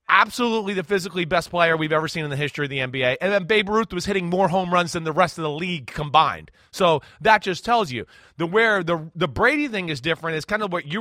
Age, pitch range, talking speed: 30-49, 155-210 Hz, 260 wpm